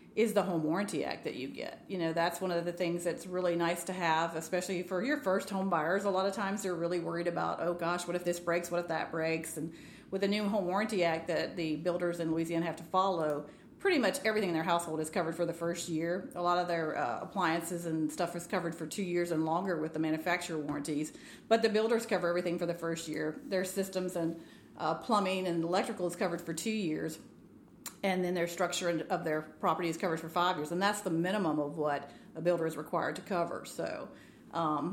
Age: 40-59